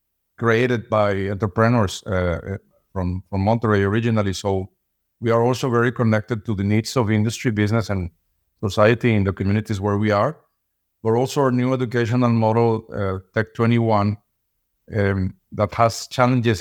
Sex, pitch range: male, 100-120 Hz